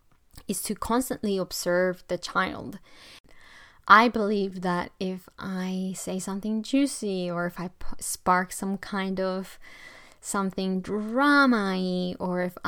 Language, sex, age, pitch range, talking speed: English, female, 20-39, 180-220 Hz, 125 wpm